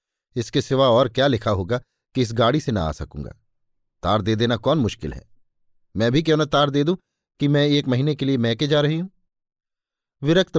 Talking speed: 210 wpm